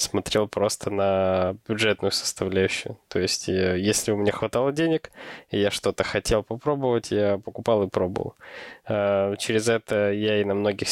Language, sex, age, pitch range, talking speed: Russian, male, 20-39, 105-115 Hz, 150 wpm